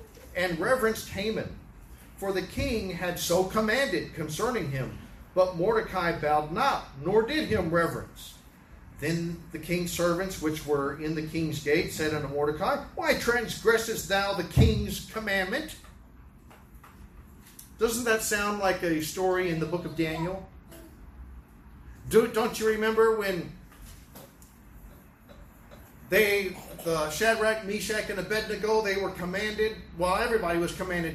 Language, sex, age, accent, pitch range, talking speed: English, male, 40-59, American, 155-200 Hz, 130 wpm